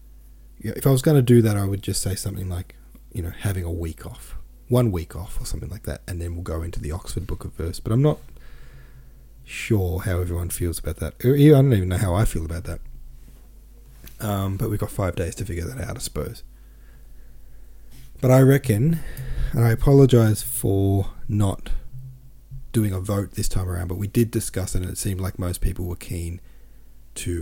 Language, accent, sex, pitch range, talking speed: English, Australian, male, 85-115 Hz, 205 wpm